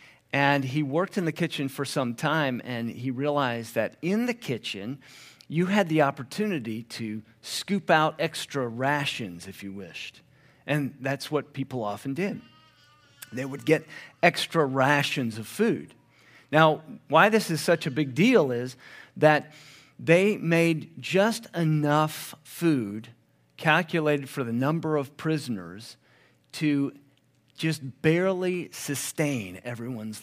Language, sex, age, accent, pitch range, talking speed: English, male, 50-69, American, 120-155 Hz, 135 wpm